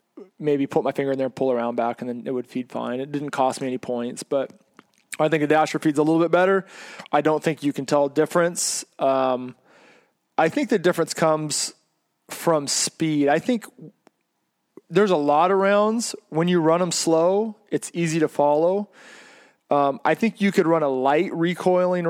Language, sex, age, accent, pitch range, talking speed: English, male, 20-39, American, 145-175 Hz, 200 wpm